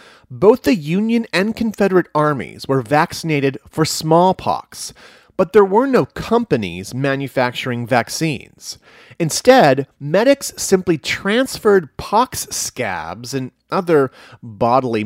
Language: English